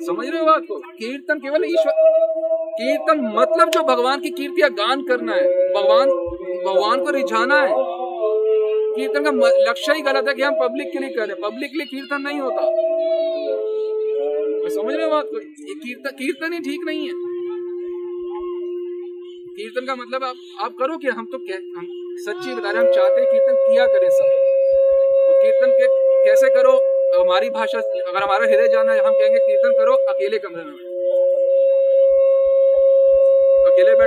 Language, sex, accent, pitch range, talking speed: Hindi, male, native, 225-315 Hz, 75 wpm